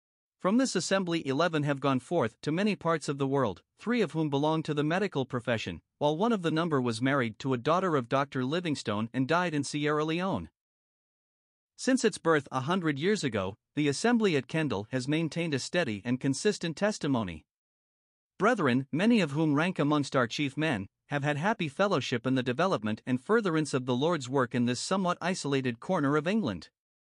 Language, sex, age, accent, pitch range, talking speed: English, male, 50-69, American, 130-170 Hz, 190 wpm